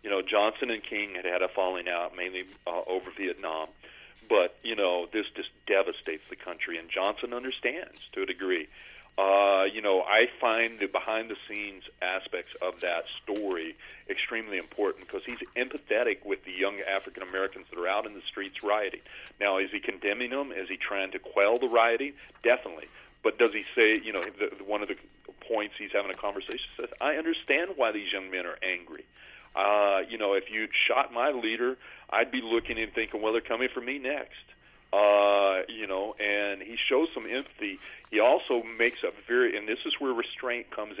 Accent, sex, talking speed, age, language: American, male, 195 wpm, 40-59, English